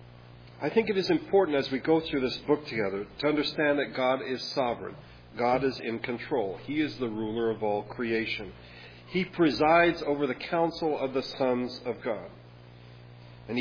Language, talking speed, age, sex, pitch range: English, 175 wpm, 40-59, male, 105-150 Hz